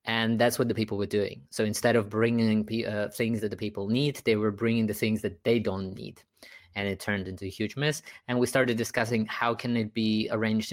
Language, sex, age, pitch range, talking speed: German, male, 20-39, 105-120 Hz, 235 wpm